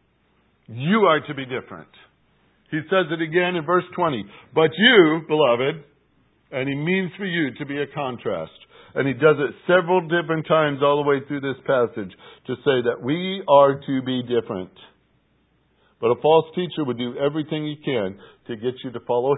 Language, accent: English, American